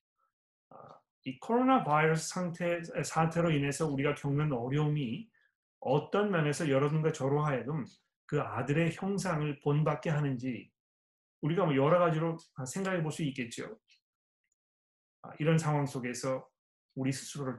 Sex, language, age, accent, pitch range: male, Korean, 30-49, native, 130-165 Hz